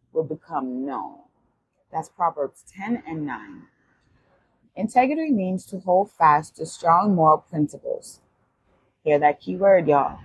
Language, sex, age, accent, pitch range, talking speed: English, female, 30-49, American, 145-195 Hz, 125 wpm